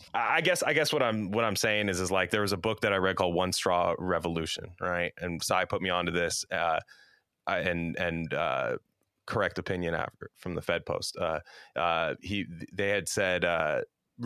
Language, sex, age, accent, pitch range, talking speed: English, male, 30-49, American, 90-110 Hz, 200 wpm